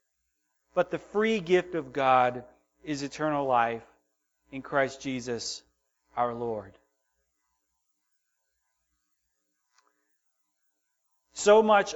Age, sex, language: 40-59, male, English